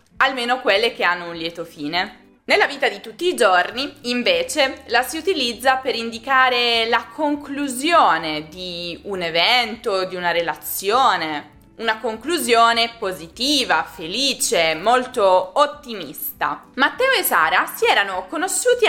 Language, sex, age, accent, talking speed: Italian, female, 20-39, native, 125 wpm